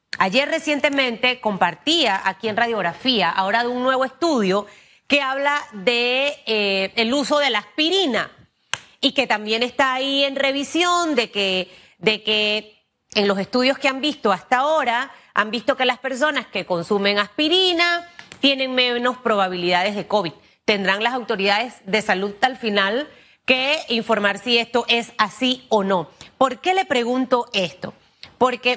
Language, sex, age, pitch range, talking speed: Spanish, female, 30-49, 210-265 Hz, 150 wpm